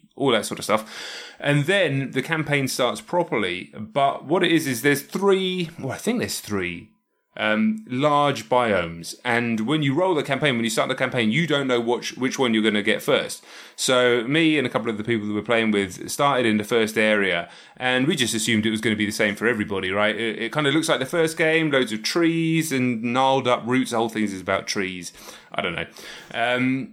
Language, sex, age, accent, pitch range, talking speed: English, male, 30-49, British, 115-155 Hz, 235 wpm